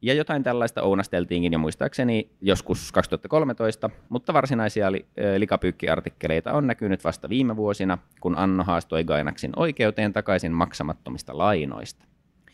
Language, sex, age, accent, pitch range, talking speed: Finnish, male, 30-49, native, 85-110 Hz, 120 wpm